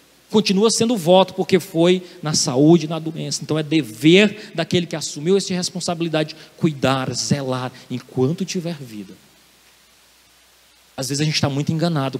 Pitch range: 150-195 Hz